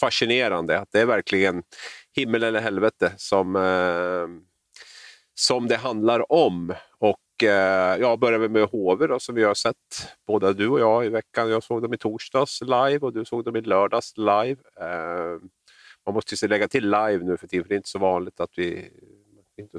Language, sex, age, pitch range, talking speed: Swedish, male, 40-59, 95-110 Hz, 195 wpm